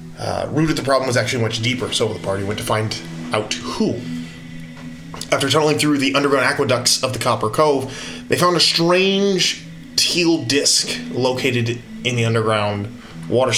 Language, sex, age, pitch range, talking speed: English, male, 20-39, 105-150 Hz, 170 wpm